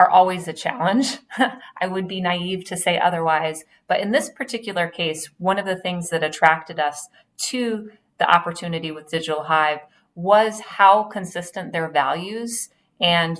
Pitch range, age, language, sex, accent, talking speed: 160-200 Hz, 30-49, English, female, American, 155 wpm